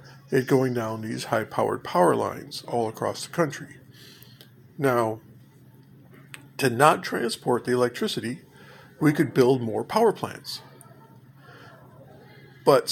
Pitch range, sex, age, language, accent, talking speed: 120-145 Hz, male, 50-69, English, American, 115 wpm